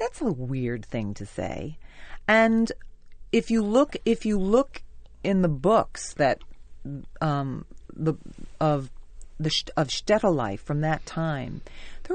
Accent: American